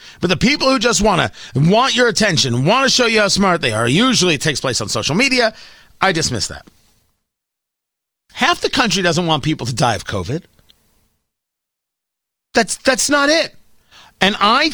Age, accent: 40-59, American